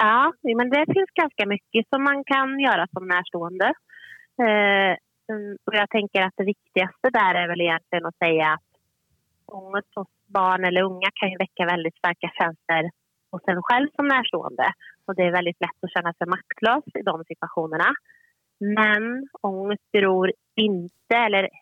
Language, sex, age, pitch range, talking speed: Swedish, female, 30-49, 170-210 Hz, 160 wpm